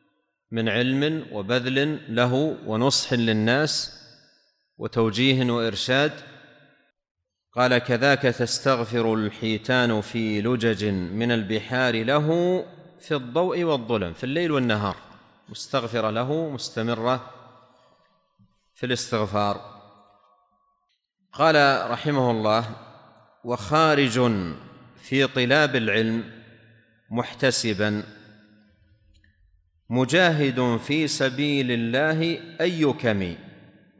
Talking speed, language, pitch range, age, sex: 75 wpm, Arabic, 110-145 Hz, 40-59, male